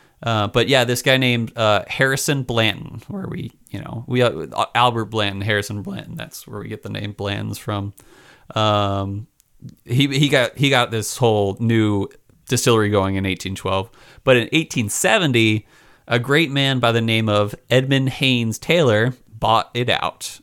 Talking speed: 160 wpm